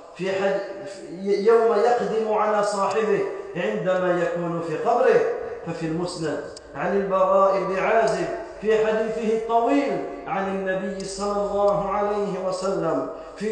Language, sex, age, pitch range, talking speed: French, male, 40-59, 185-230 Hz, 115 wpm